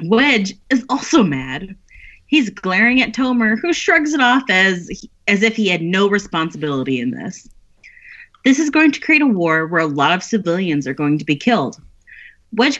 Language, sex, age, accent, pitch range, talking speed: English, female, 30-49, American, 155-245 Hz, 185 wpm